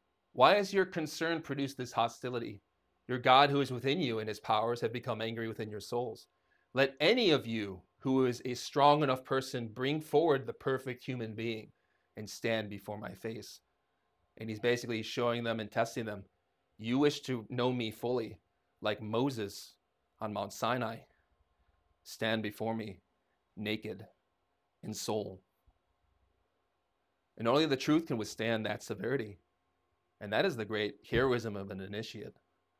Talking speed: 155 wpm